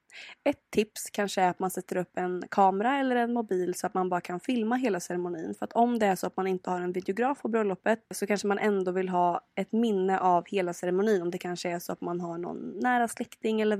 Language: Swedish